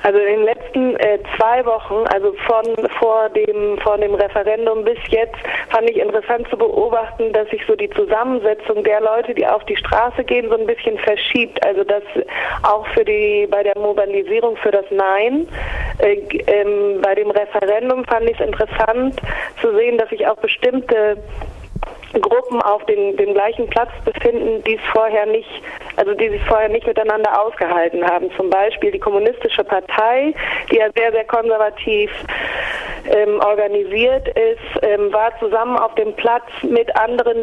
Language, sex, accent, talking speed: German, female, German, 165 wpm